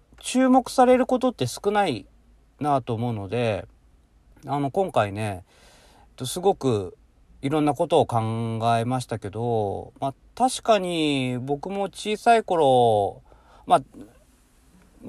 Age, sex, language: 40-59, male, Japanese